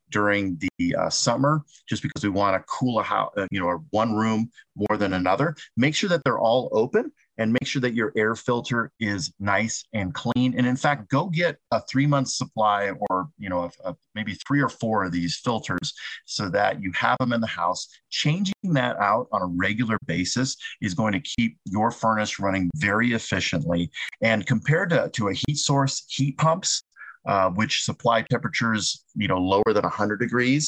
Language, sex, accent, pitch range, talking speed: English, male, American, 100-135 Hz, 195 wpm